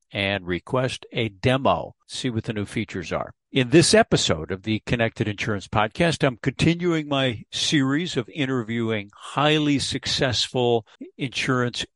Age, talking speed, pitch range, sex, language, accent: 50-69, 135 wpm, 110-135 Hz, male, English, American